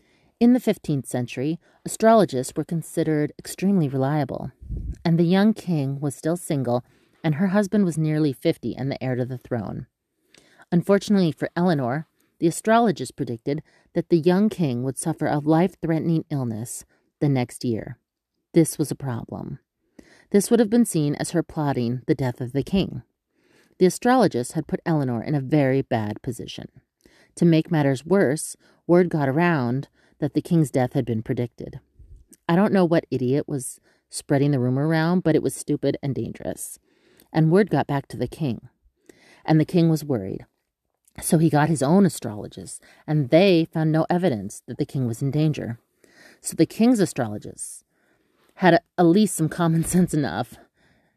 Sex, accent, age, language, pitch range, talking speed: female, American, 30-49, English, 130-170 Hz, 170 wpm